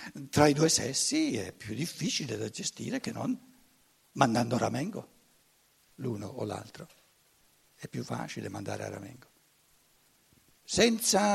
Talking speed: 125 wpm